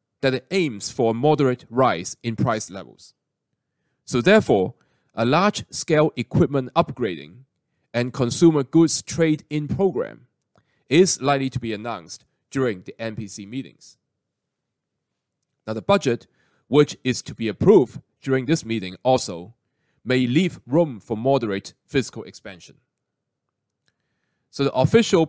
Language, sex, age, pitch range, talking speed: English, male, 30-49, 115-150 Hz, 125 wpm